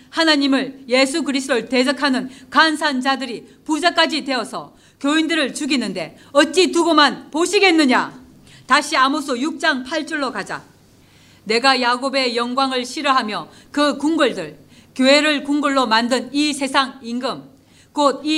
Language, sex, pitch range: Korean, female, 250-295 Hz